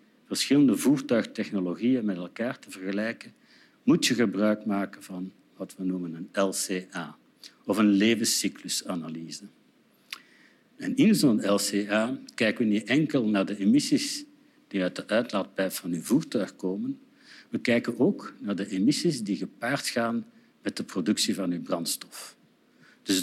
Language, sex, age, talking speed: Dutch, male, 60-79, 140 wpm